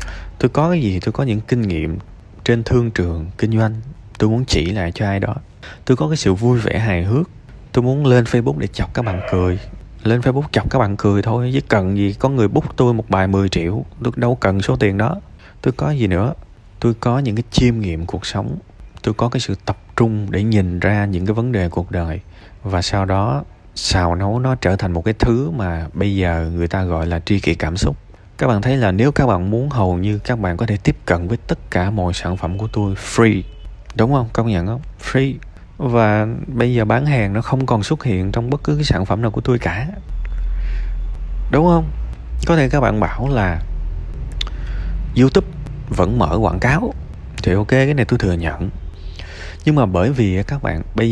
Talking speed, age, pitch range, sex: 220 wpm, 20-39, 90-120 Hz, male